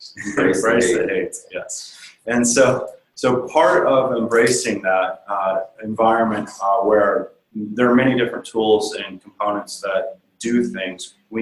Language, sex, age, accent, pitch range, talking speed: English, male, 30-49, American, 105-130 Hz, 135 wpm